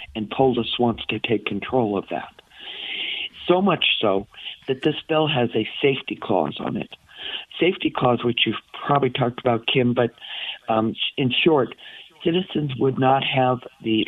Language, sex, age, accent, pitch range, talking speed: English, male, 50-69, American, 115-135 Hz, 160 wpm